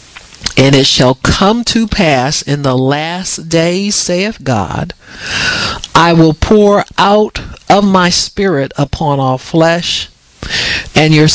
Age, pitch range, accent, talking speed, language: 50-69, 135-175 Hz, American, 125 wpm, English